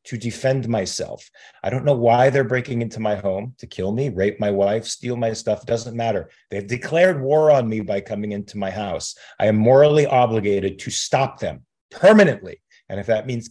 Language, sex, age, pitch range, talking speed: English, male, 40-59, 100-125 Hz, 200 wpm